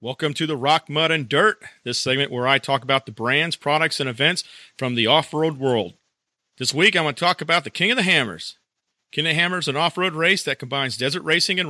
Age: 40-59